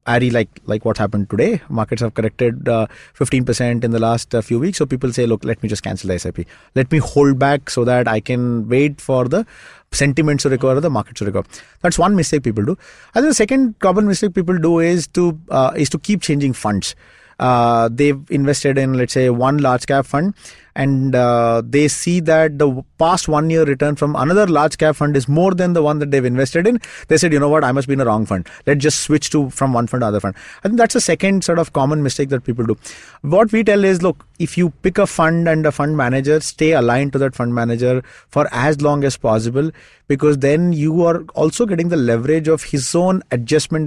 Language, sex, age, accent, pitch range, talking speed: English, male, 30-49, Indian, 120-160 Hz, 235 wpm